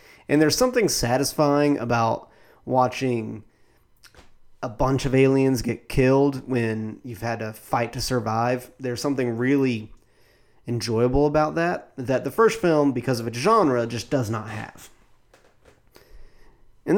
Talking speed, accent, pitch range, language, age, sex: 135 wpm, American, 120-165 Hz, English, 30-49, male